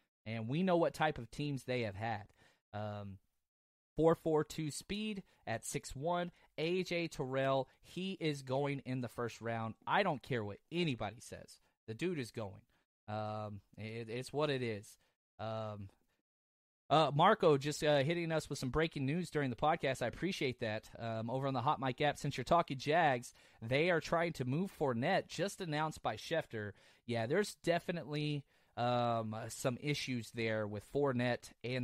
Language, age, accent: English, 30-49, American